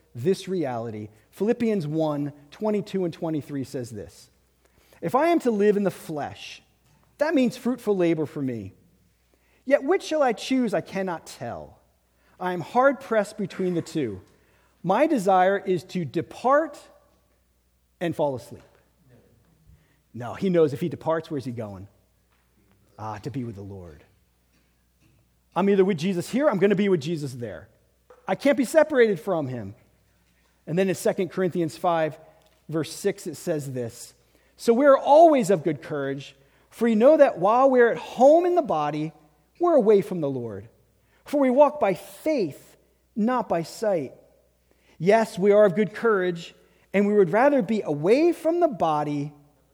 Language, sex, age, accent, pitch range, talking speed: English, male, 40-59, American, 125-215 Hz, 165 wpm